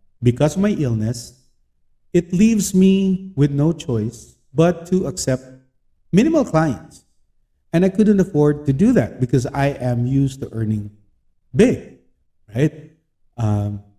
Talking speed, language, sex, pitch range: 135 wpm, English, male, 120-180 Hz